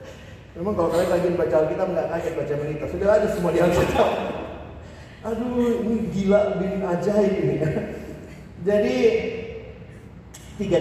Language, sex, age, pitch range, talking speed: Indonesian, male, 30-49, 140-195 Hz, 130 wpm